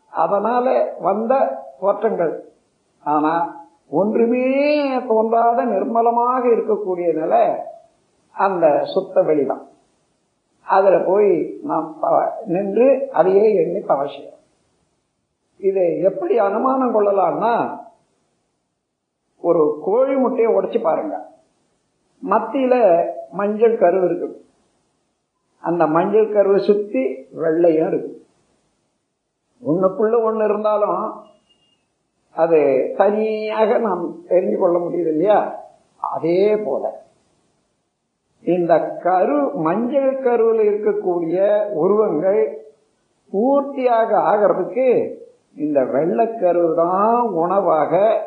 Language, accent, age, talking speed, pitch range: Tamil, native, 50-69, 75 wpm, 175-270 Hz